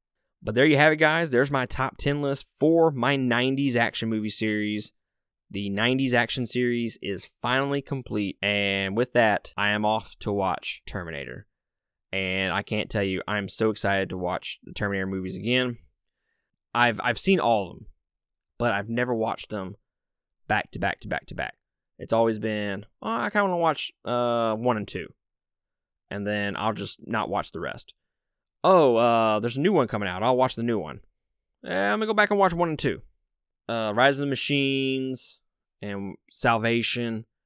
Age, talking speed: 20-39, 190 wpm